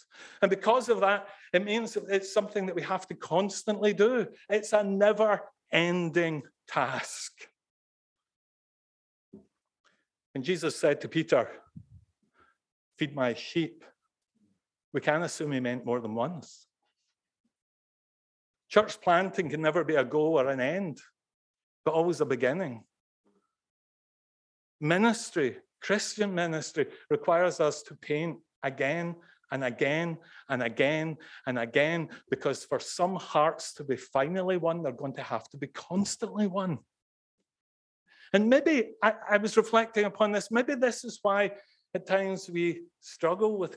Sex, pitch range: male, 155-205 Hz